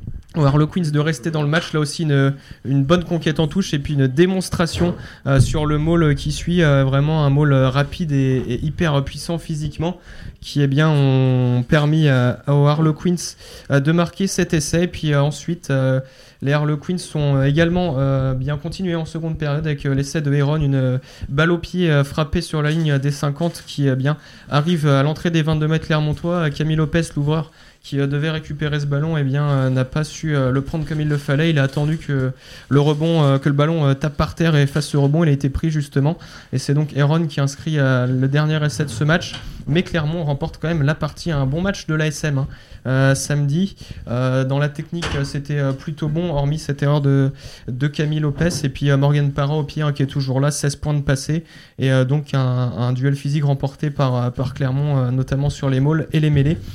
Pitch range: 140-160 Hz